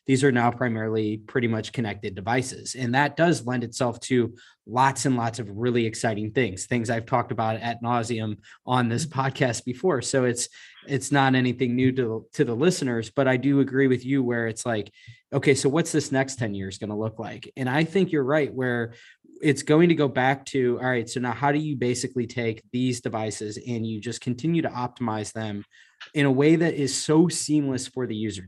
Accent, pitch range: American, 115-135 Hz